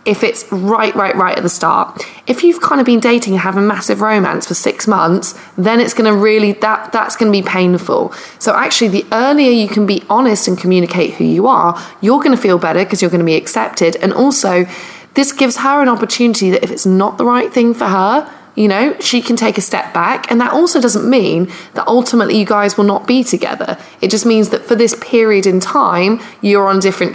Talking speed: 235 wpm